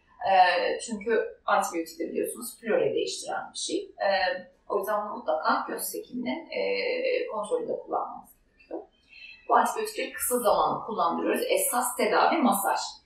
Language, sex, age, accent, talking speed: Turkish, female, 30-49, native, 125 wpm